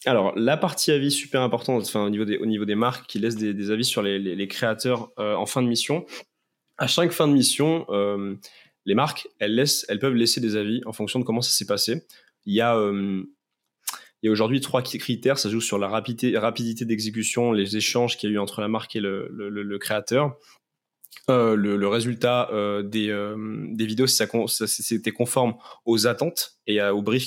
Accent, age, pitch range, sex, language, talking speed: French, 20-39, 105-125 Hz, male, French, 225 wpm